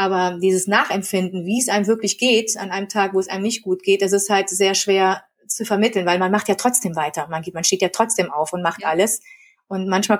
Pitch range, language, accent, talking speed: 185-225 Hz, German, German, 245 wpm